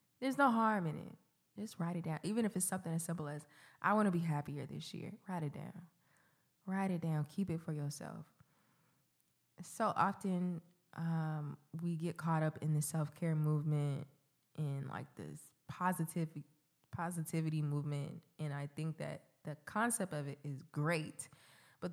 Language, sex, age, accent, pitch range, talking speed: English, female, 20-39, American, 150-195 Hz, 165 wpm